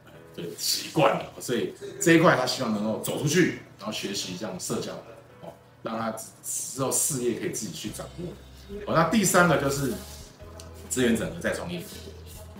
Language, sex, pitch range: Chinese, male, 100-160 Hz